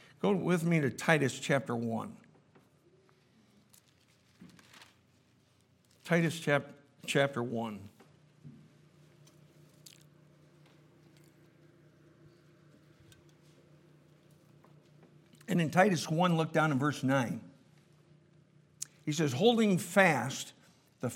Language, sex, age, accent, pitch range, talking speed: English, male, 60-79, American, 145-185 Hz, 70 wpm